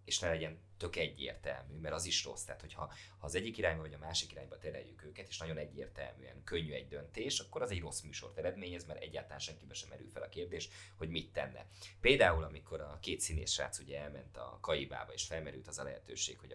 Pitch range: 80-95 Hz